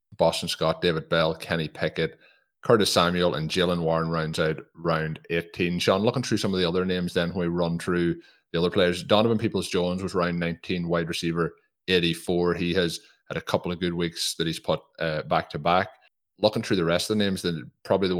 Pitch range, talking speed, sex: 80-90 Hz, 215 wpm, male